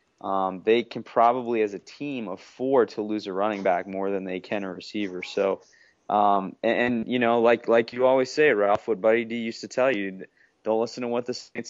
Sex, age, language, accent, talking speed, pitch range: male, 20-39, English, American, 225 wpm, 100-120 Hz